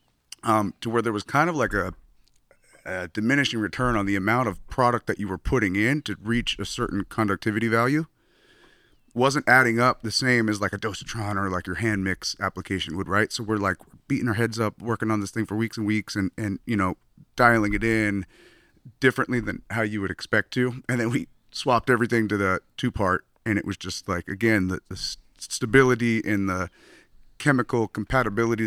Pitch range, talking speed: 100-115 Hz, 200 wpm